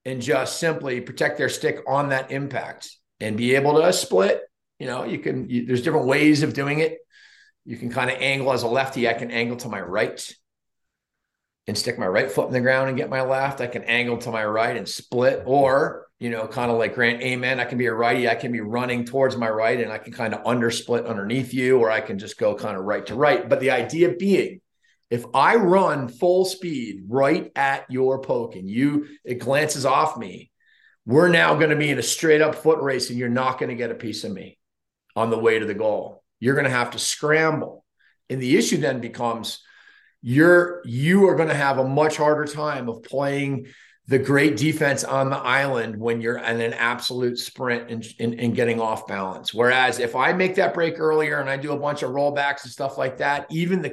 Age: 40-59